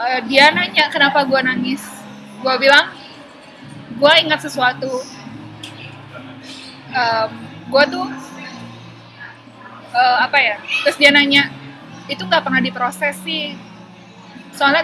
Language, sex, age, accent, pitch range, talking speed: Indonesian, female, 20-39, native, 255-295 Hz, 95 wpm